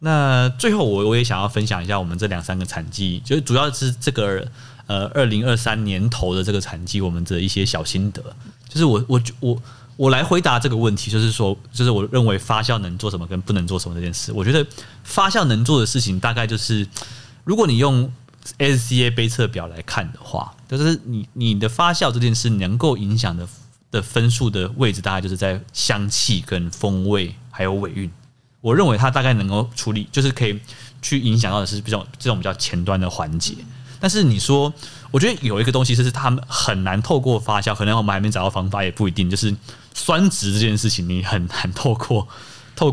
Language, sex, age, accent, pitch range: Chinese, male, 30-49, native, 100-125 Hz